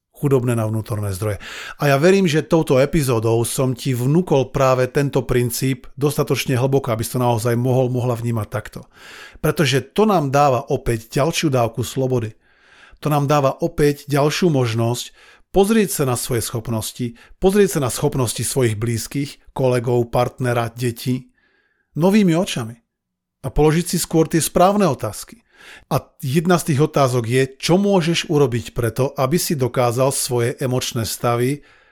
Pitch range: 120-145 Hz